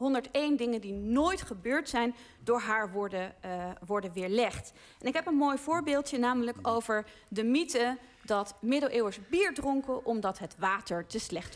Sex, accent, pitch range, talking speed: female, Dutch, 220-275 Hz, 160 wpm